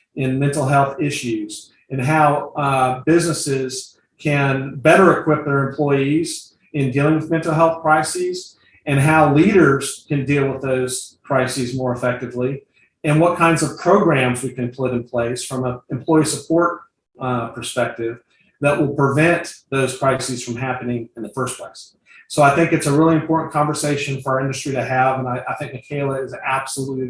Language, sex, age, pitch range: English, male, 40-59, 130-155 Hz